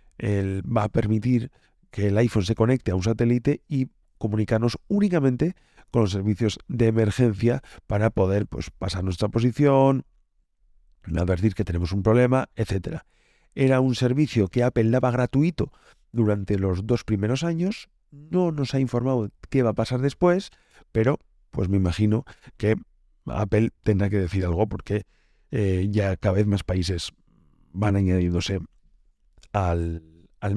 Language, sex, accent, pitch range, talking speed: Spanish, male, Spanish, 95-125 Hz, 145 wpm